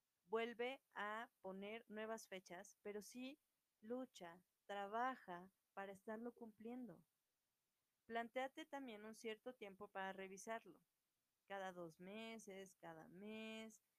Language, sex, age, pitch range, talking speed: Spanish, female, 30-49, 190-230 Hz, 105 wpm